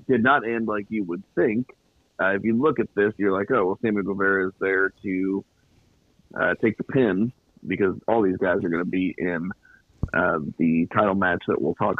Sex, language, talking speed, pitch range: male, English, 210 wpm, 100-125 Hz